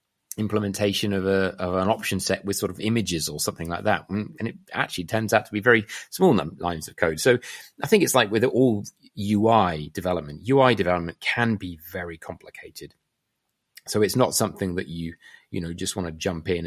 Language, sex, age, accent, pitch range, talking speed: English, male, 30-49, British, 90-115 Hz, 200 wpm